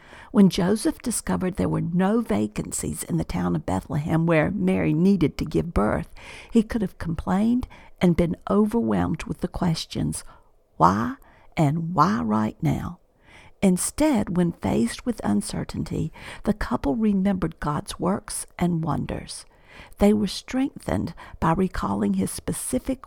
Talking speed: 135 wpm